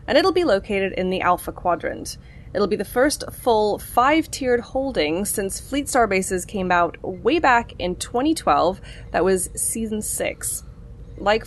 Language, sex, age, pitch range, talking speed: English, female, 20-39, 175-245 Hz, 155 wpm